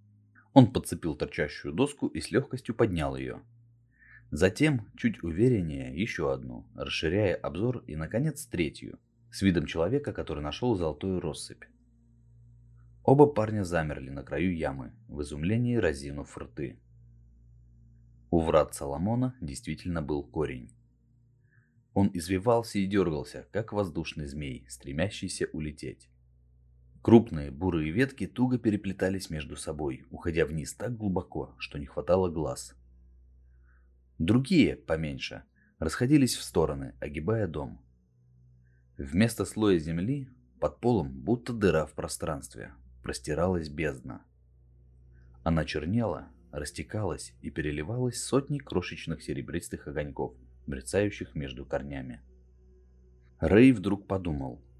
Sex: male